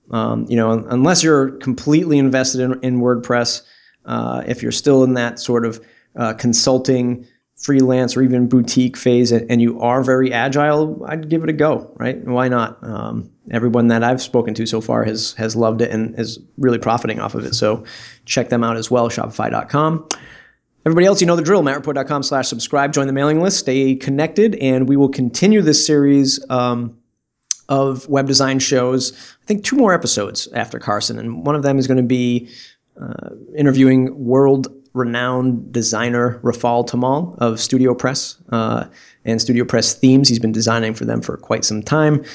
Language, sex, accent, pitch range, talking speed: English, male, American, 115-135 Hz, 185 wpm